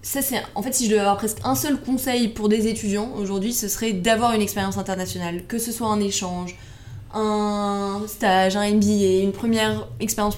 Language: French